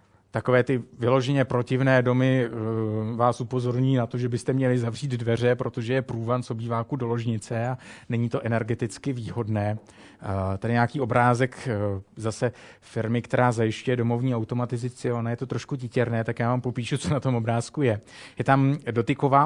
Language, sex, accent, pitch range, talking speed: Czech, male, native, 115-125 Hz, 155 wpm